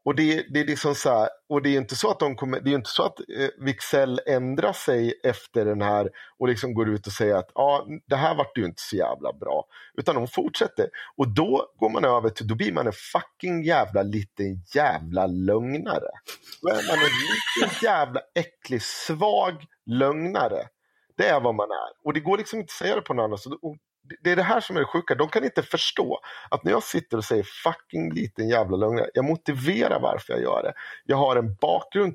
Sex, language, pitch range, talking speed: male, Swedish, 110-160 Hz, 215 wpm